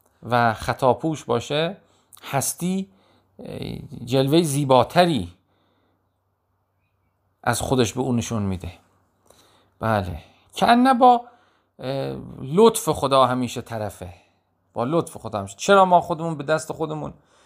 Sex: male